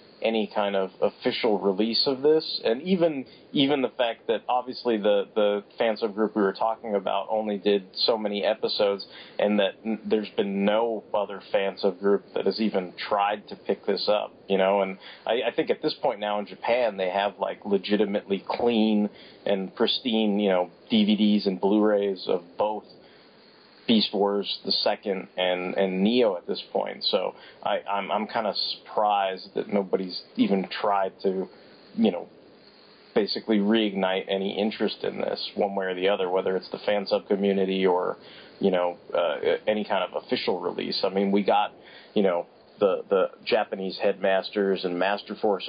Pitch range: 95-110 Hz